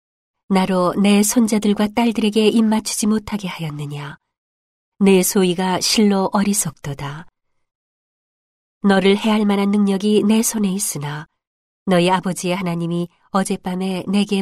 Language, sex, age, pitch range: Korean, female, 40-59, 165-205 Hz